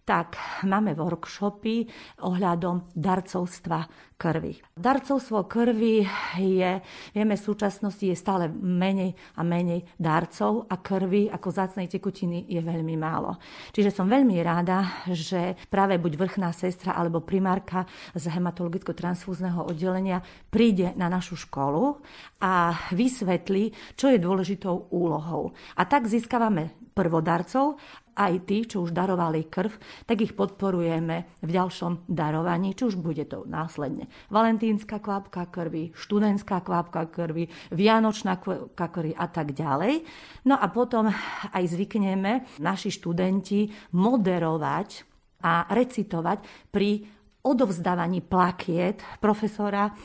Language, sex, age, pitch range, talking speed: Slovak, female, 40-59, 170-205 Hz, 115 wpm